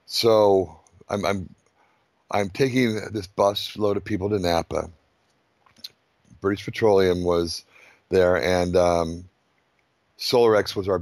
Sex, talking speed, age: male, 115 wpm, 60-79